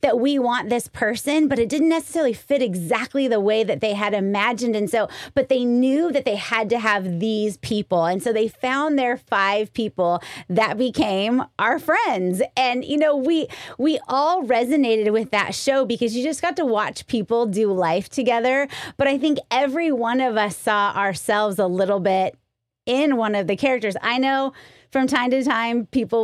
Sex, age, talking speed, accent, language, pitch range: female, 30-49, 190 wpm, American, English, 205-275 Hz